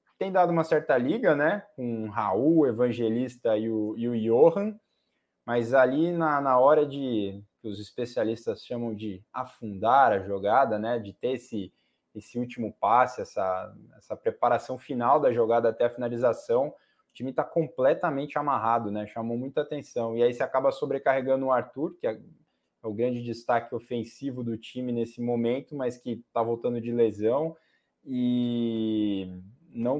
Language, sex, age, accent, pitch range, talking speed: Portuguese, male, 20-39, Brazilian, 110-130 Hz, 160 wpm